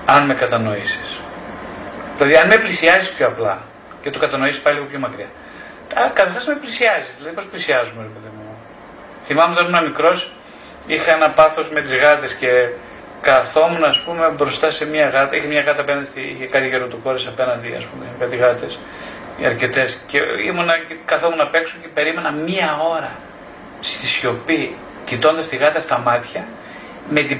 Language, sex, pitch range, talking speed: Greek, male, 130-170 Hz, 165 wpm